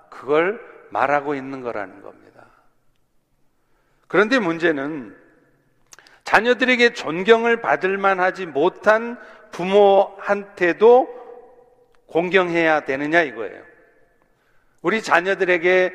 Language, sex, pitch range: Korean, male, 185-245 Hz